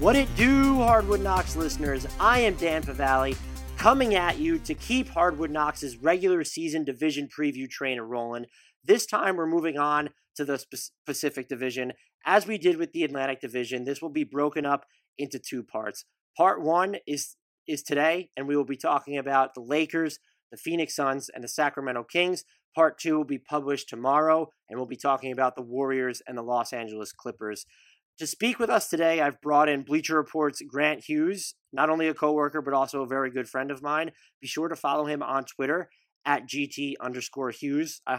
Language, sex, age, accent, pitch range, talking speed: English, male, 30-49, American, 130-165 Hz, 190 wpm